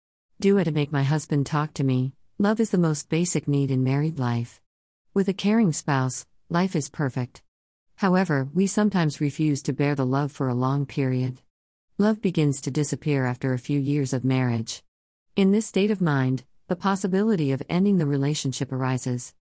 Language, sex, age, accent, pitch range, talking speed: English, female, 40-59, American, 130-160 Hz, 180 wpm